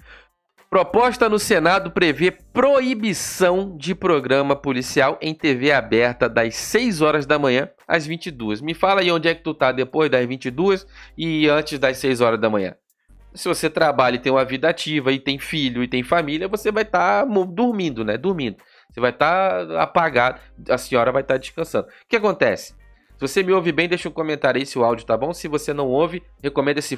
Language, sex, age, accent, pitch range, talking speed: Portuguese, male, 20-39, Brazilian, 135-185 Hz, 200 wpm